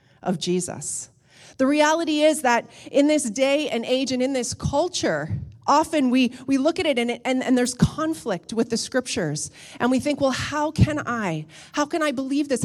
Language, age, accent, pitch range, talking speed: English, 30-49, American, 195-290 Hz, 195 wpm